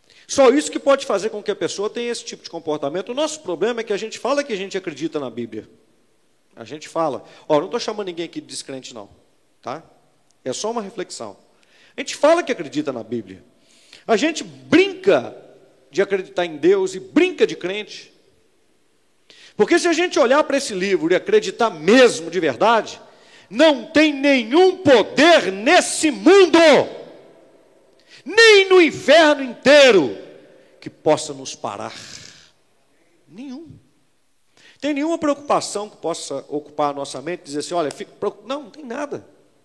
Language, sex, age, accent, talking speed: Portuguese, male, 40-59, Brazilian, 165 wpm